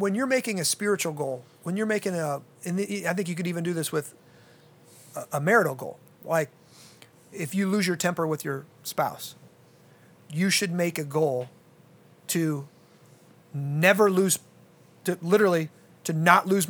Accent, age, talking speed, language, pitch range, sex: American, 30-49, 160 wpm, English, 160-190 Hz, male